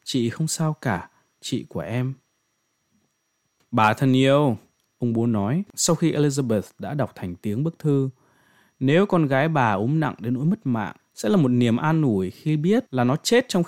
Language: Vietnamese